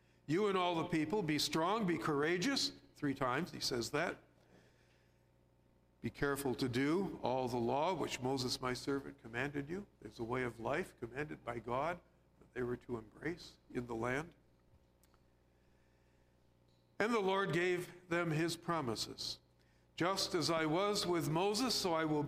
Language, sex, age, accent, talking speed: English, male, 50-69, American, 160 wpm